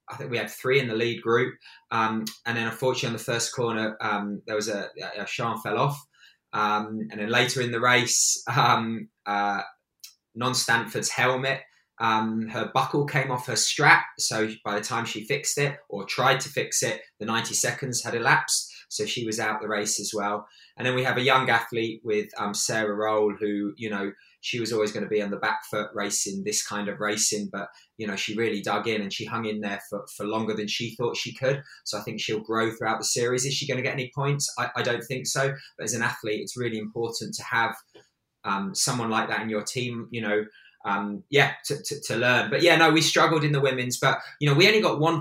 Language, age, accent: English, 20-39, British